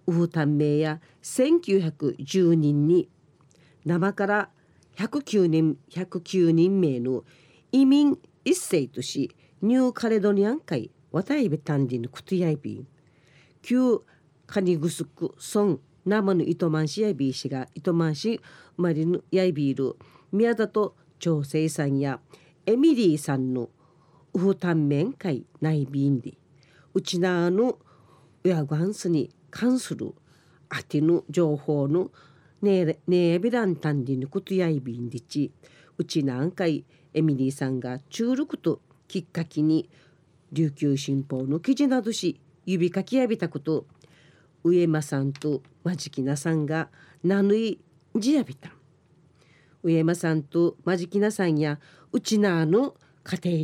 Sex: female